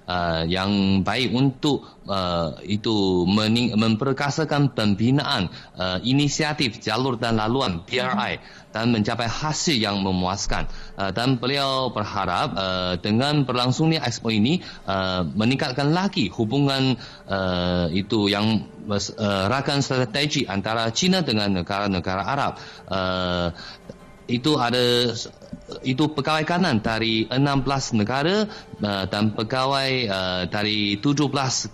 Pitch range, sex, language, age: 100-140 Hz, male, Malay, 20-39